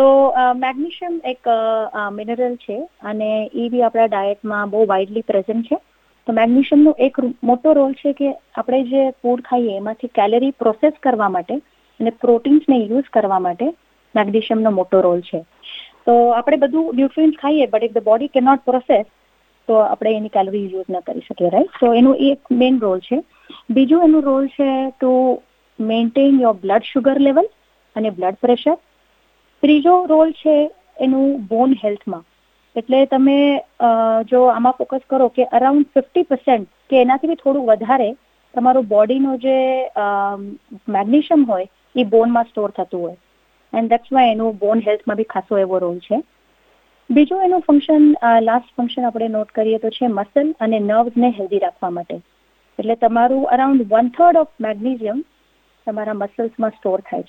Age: 30-49